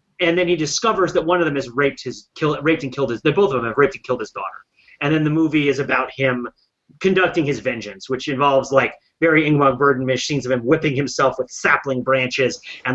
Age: 30-49